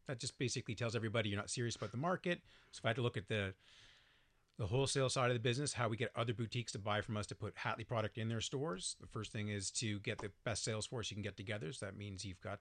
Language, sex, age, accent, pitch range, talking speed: English, male, 40-59, American, 105-125 Hz, 285 wpm